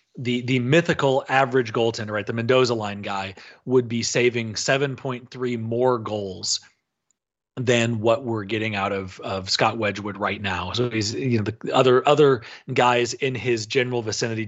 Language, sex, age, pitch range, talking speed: English, male, 30-49, 110-135 Hz, 170 wpm